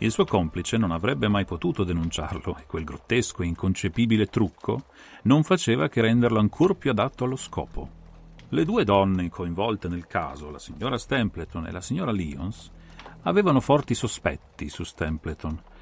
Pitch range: 85-115 Hz